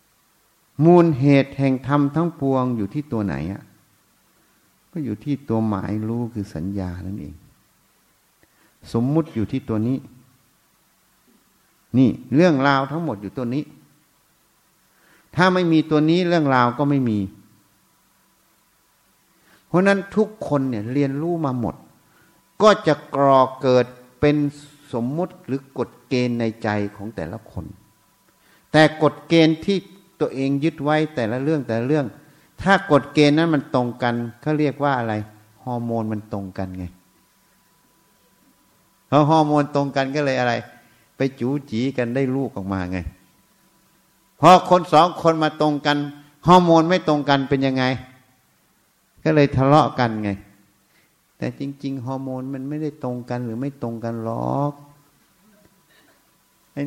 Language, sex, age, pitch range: Thai, male, 60-79, 120-150 Hz